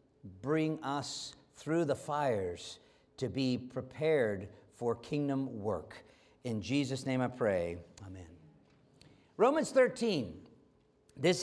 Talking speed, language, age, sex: 105 wpm, English, 50-69, male